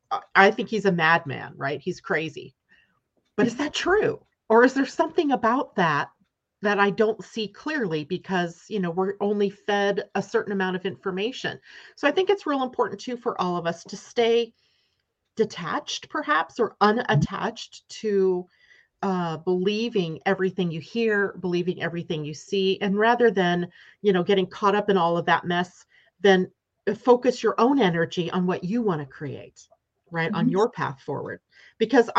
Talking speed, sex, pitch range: 170 wpm, female, 175-235 Hz